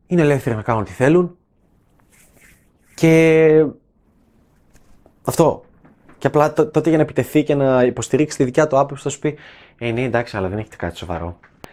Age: 20-39